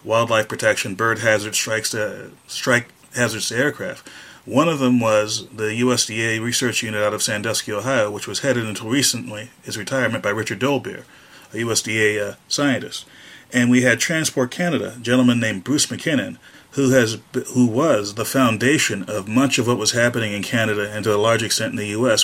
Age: 30-49